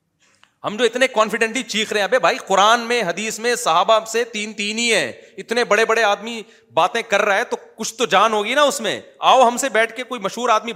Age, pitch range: 30-49, 165-230 Hz